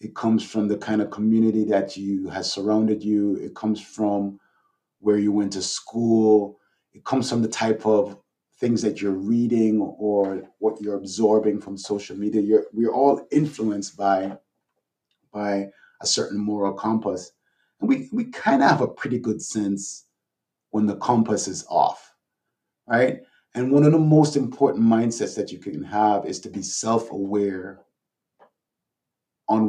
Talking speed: 160 wpm